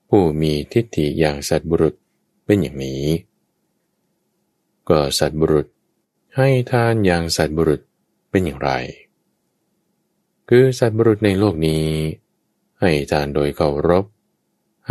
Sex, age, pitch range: male, 20-39, 75-110 Hz